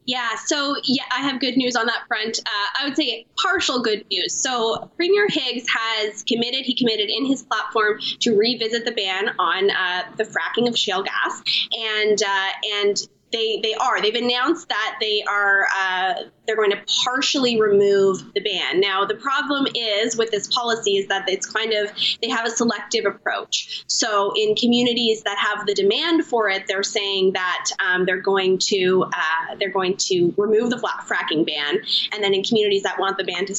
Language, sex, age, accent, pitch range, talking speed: English, female, 20-39, American, 200-245 Hz, 190 wpm